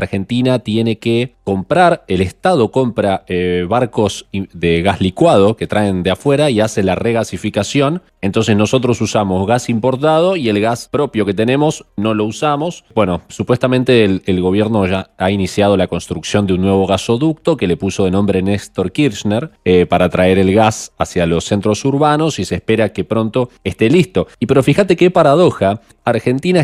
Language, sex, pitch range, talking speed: Spanish, male, 95-125 Hz, 175 wpm